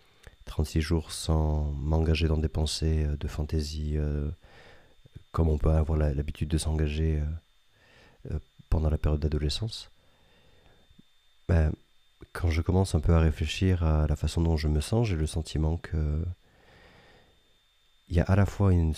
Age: 40-59